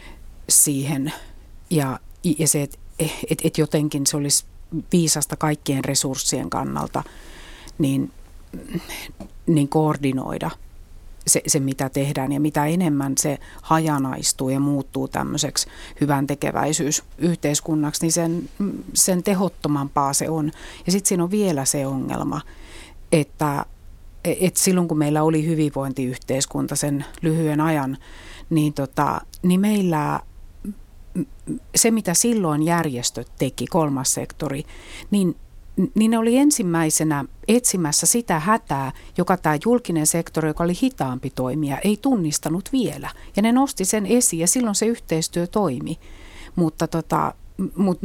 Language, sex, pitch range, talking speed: Finnish, female, 140-175 Hz, 120 wpm